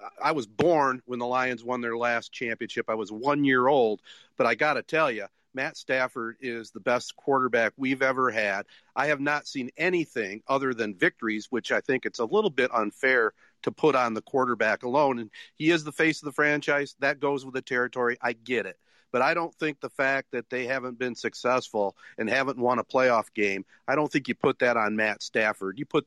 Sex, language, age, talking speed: male, English, 40-59, 220 wpm